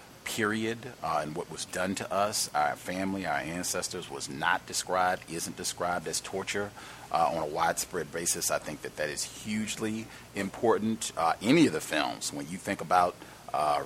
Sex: male